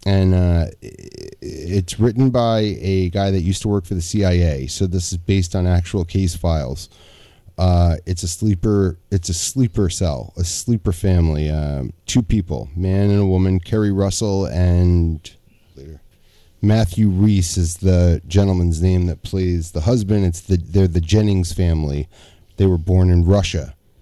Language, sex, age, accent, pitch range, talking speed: English, male, 30-49, American, 85-100 Hz, 160 wpm